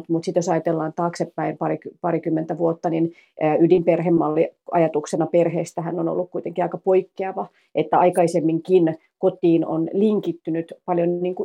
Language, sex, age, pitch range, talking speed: Finnish, female, 30-49, 165-180 Hz, 120 wpm